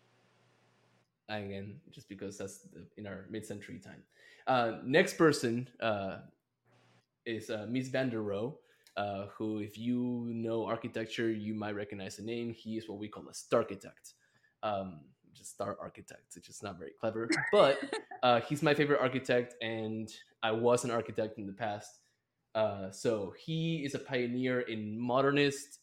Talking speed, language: 155 wpm, English